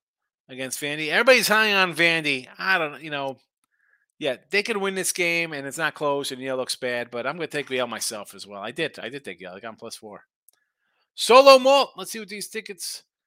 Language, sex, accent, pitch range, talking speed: English, male, American, 125-180 Hz, 235 wpm